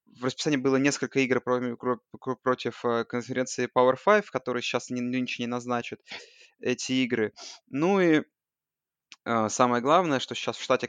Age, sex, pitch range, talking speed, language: 20-39, male, 115-135 Hz, 140 wpm, Russian